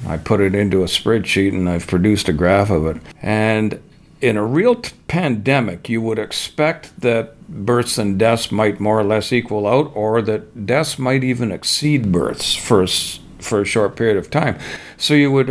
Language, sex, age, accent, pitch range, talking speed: English, male, 50-69, American, 100-125 Hz, 185 wpm